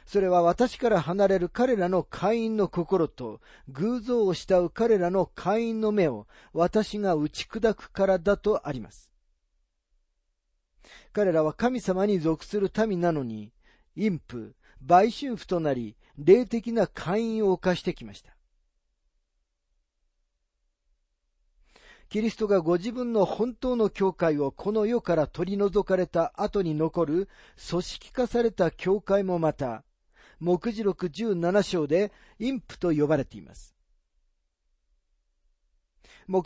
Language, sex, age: Japanese, male, 40-59